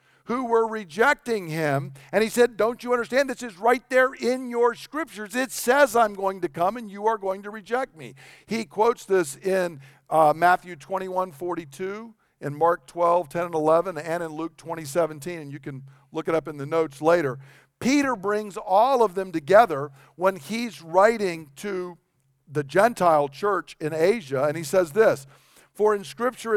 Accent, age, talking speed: American, 50-69, 185 wpm